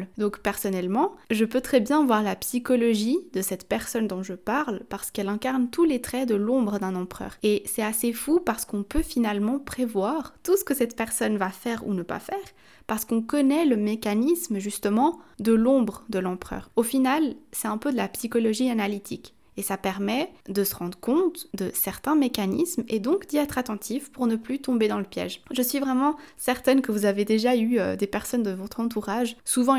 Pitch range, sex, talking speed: 210-265 Hz, female, 205 wpm